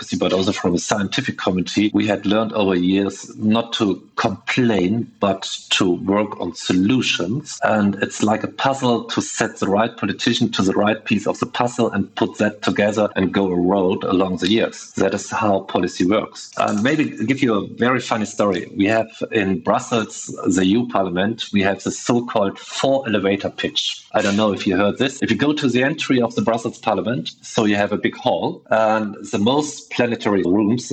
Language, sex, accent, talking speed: English, male, German, 200 wpm